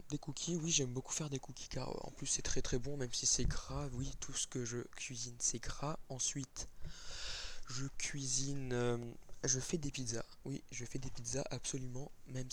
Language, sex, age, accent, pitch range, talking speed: French, male, 20-39, French, 120-135 Hz, 195 wpm